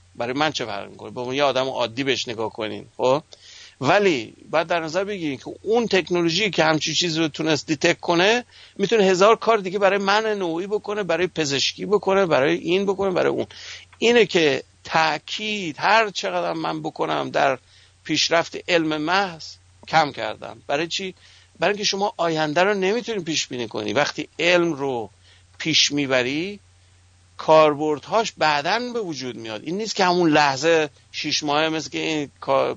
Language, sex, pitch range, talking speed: English, male, 140-195 Hz, 165 wpm